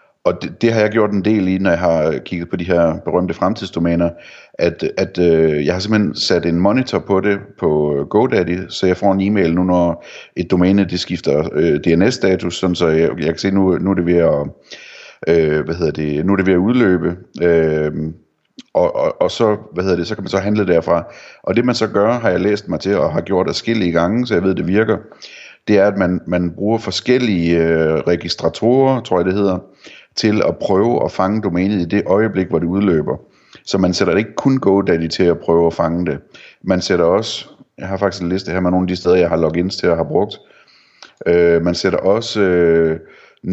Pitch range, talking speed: 85-100 Hz, 205 wpm